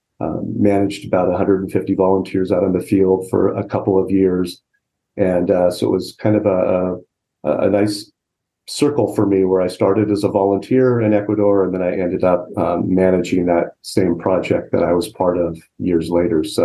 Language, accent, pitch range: English, American, 95-110 Hz